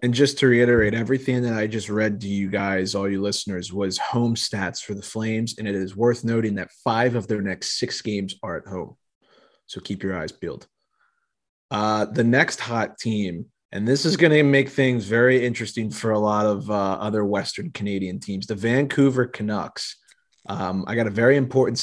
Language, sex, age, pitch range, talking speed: English, male, 30-49, 105-120 Hz, 200 wpm